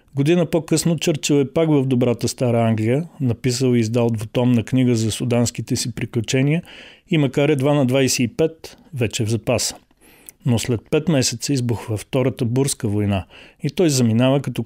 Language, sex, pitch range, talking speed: Bulgarian, male, 120-140 Hz, 165 wpm